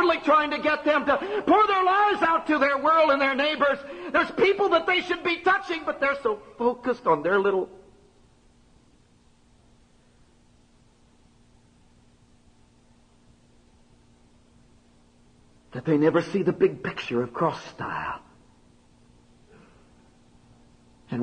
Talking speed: 115 wpm